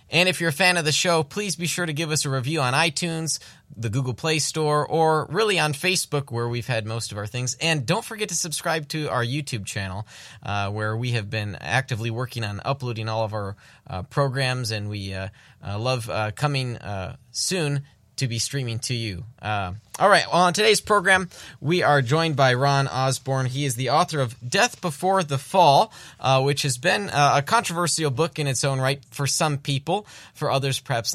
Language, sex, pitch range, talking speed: English, male, 115-150 Hz, 210 wpm